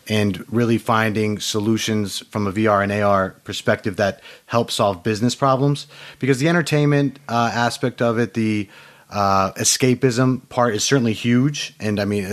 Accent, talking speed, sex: American, 155 wpm, male